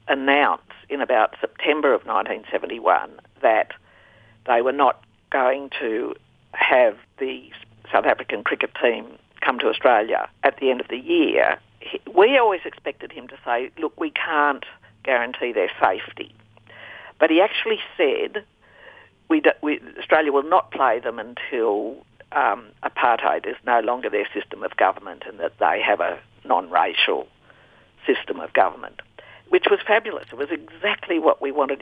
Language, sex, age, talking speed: English, female, 50-69, 145 wpm